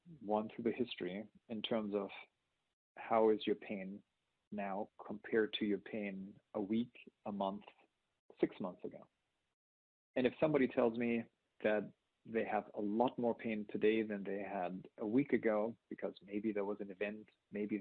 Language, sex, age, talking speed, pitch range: English, male, 40-59, 165 wpm, 105-115 Hz